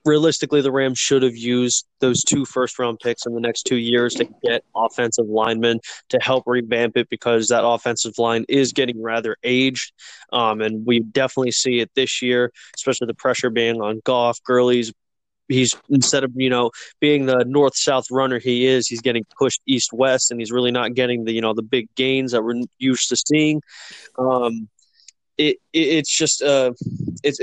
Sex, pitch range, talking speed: male, 115-135 Hz, 185 wpm